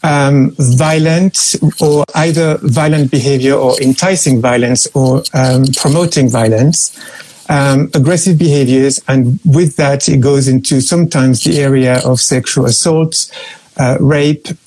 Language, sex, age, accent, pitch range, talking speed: Italian, male, 50-69, French, 130-155 Hz, 125 wpm